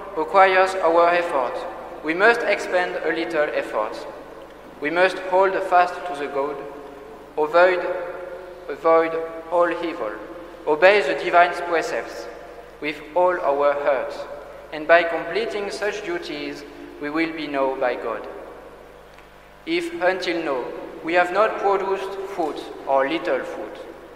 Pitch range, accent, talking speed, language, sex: 150-185 Hz, French, 125 wpm, English, male